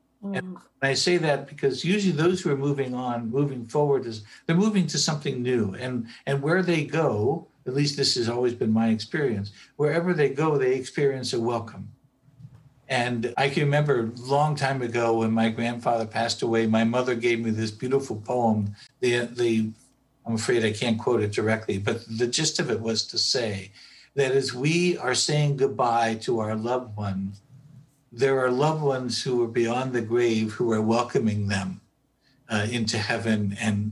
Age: 60-79